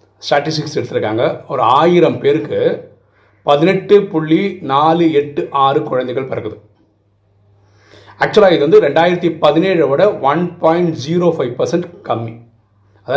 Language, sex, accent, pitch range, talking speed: Tamil, male, native, 130-185 Hz, 90 wpm